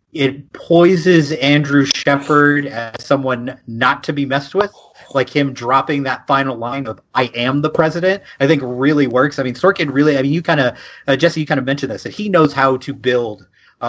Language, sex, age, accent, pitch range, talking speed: English, male, 30-49, American, 130-155 Hz, 205 wpm